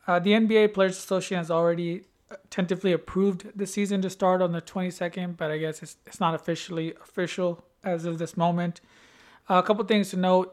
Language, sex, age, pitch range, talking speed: English, male, 30-49, 160-175 Hz, 200 wpm